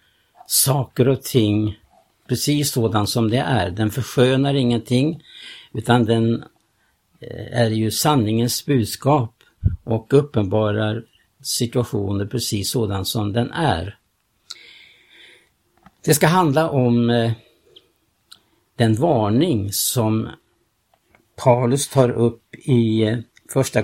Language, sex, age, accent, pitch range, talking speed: Swedish, male, 60-79, Norwegian, 110-130 Hz, 95 wpm